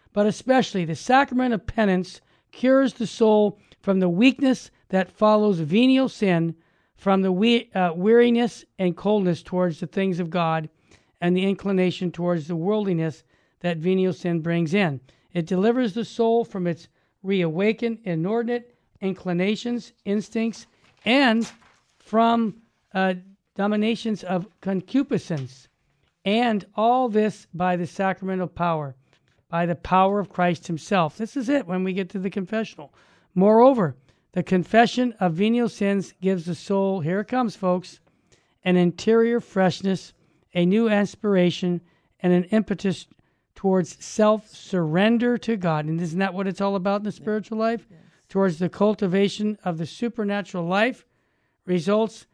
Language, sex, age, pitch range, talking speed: English, male, 50-69, 175-215 Hz, 140 wpm